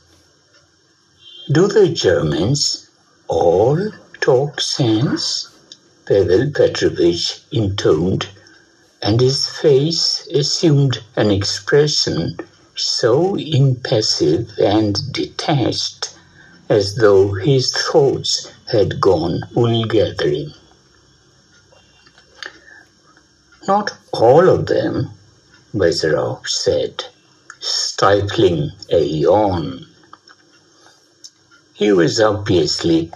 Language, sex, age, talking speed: English, male, 60-79, 70 wpm